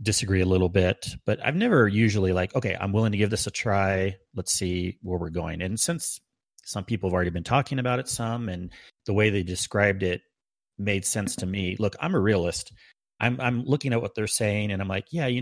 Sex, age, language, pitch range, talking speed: male, 30-49, English, 90-105 Hz, 230 wpm